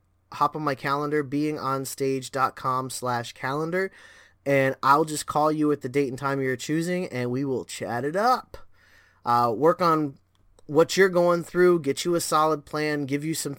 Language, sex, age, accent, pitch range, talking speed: English, male, 20-39, American, 115-150 Hz, 175 wpm